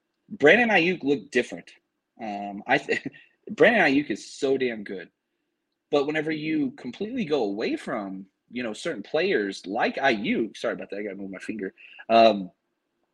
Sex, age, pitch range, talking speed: male, 30-49, 125-160 Hz, 160 wpm